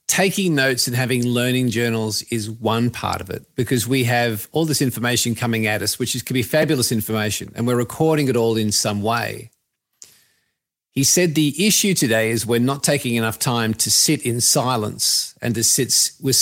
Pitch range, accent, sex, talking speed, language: 115-145 Hz, Australian, male, 190 wpm, English